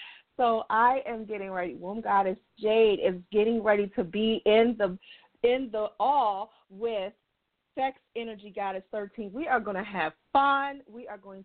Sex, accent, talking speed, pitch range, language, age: female, American, 160 wpm, 180-255 Hz, English, 40-59